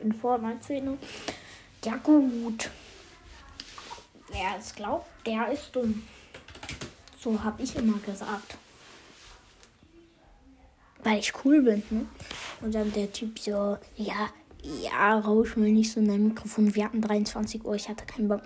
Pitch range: 210-235 Hz